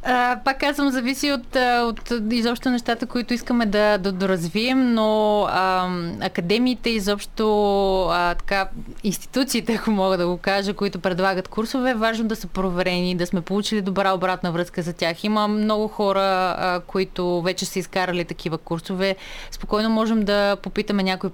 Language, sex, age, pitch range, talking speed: Bulgarian, female, 20-39, 180-215 Hz, 155 wpm